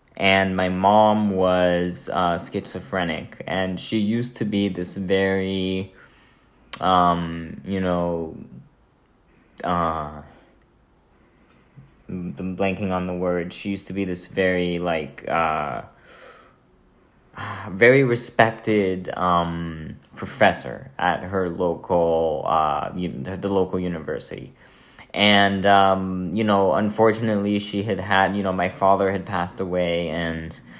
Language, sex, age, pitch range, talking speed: English, male, 20-39, 90-100 Hz, 110 wpm